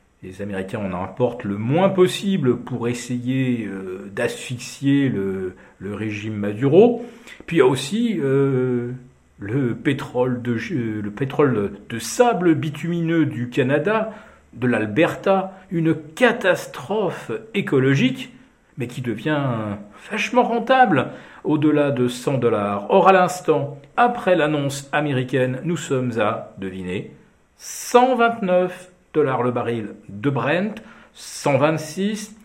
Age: 50-69